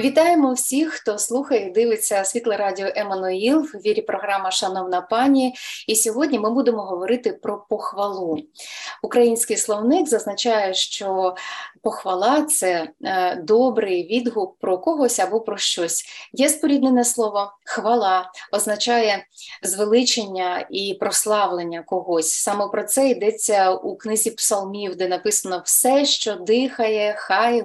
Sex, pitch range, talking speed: female, 195-245 Hz, 125 wpm